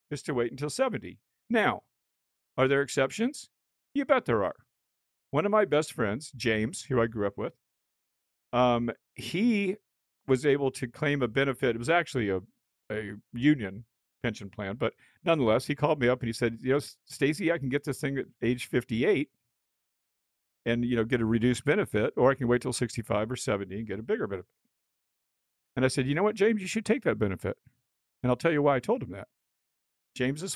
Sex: male